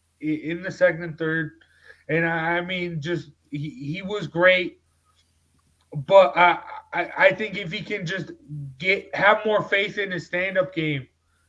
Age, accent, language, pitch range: 20-39, American, English, 160-205 Hz